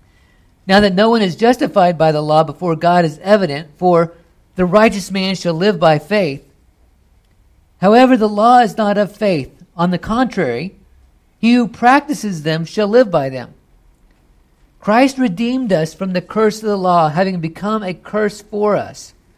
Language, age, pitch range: English, 50-69, 130-195 Hz